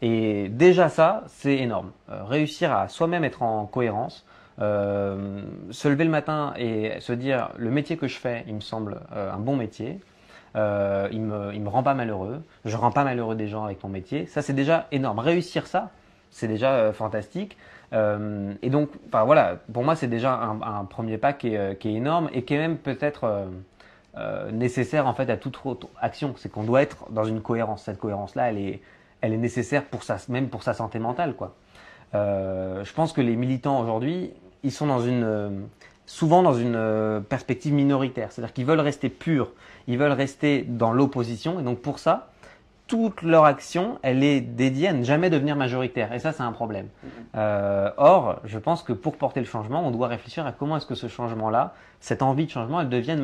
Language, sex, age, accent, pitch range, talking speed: French, male, 30-49, French, 110-145 Hz, 205 wpm